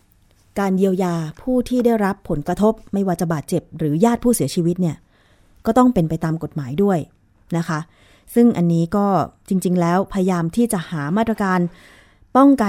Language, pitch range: Thai, 160-220 Hz